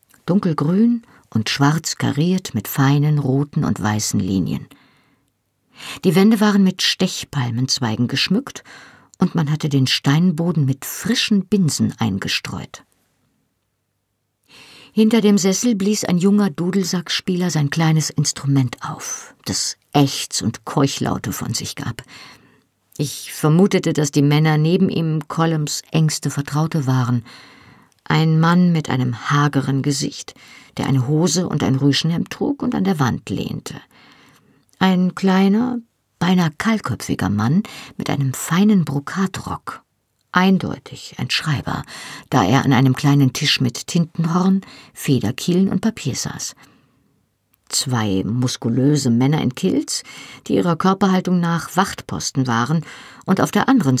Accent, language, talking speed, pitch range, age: German, German, 125 wpm, 135-185 Hz, 50-69